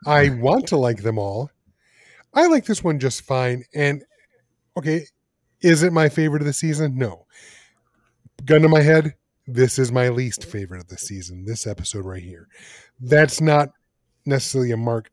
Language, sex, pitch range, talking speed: English, male, 115-145 Hz, 170 wpm